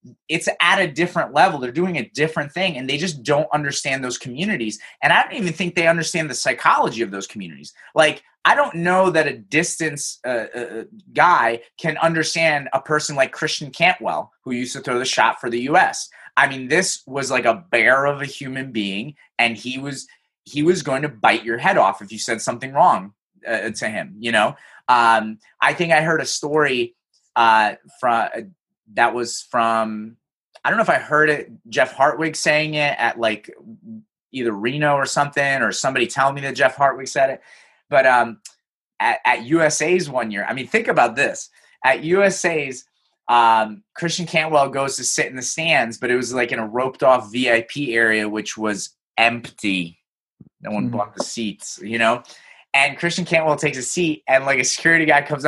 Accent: American